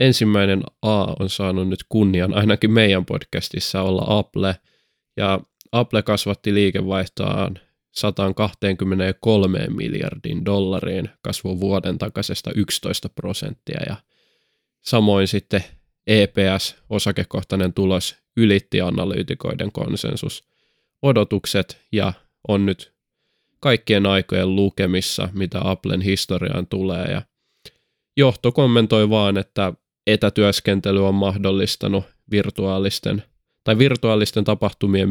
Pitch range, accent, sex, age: 95-105 Hz, native, male, 20-39